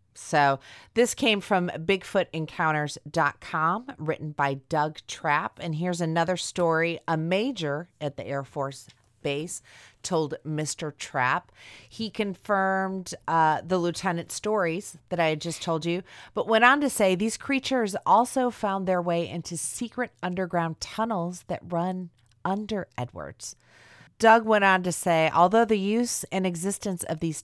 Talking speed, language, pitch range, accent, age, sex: 145 wpm, English, 145-195 Hz, American, 30-49, female